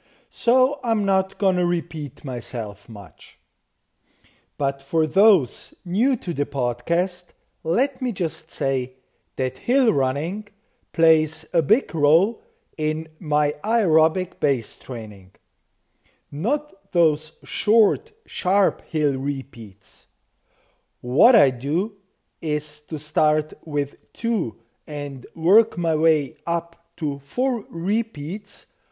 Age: 40-59